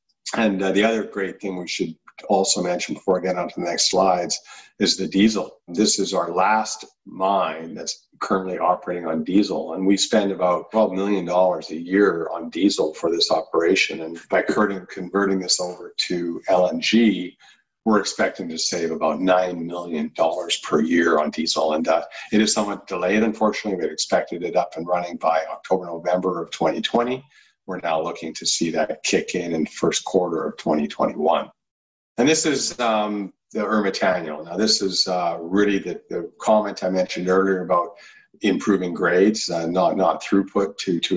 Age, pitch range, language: 50-69, 85-100 Hz, English